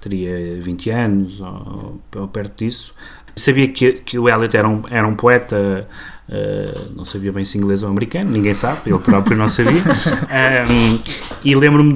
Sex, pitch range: male, 100-120 Hz